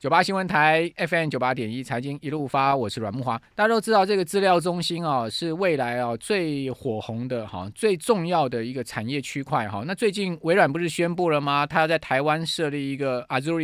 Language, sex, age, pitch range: Chinese, male, 20-39, 125-165 Hz